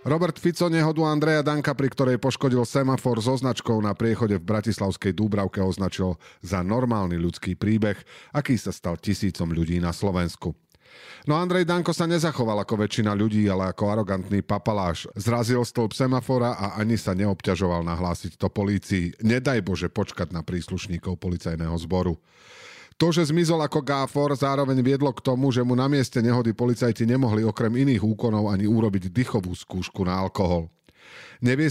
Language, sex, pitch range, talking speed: Slovak, male, 95-130 Hz, 155 wpm